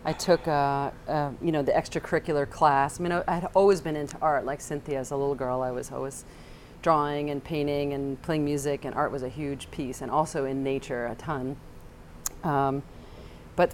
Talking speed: 200 wpm